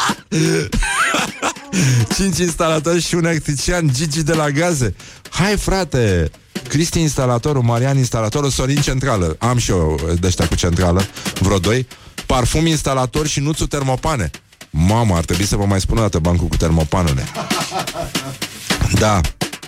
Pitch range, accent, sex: 95-140 Hz, native, male